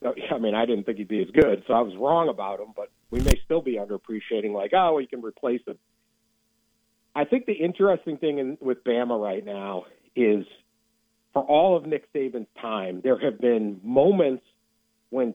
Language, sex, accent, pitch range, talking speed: English, male, American, 110-140 Hz, 190 wpm